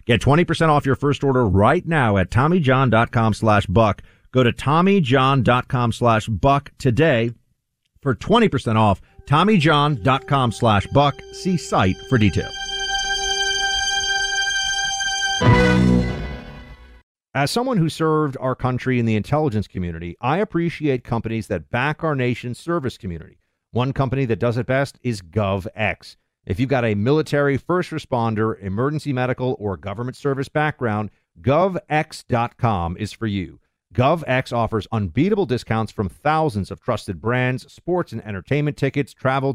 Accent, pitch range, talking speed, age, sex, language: American, 110-150 Hz, 125 wpm, 50-69, male, English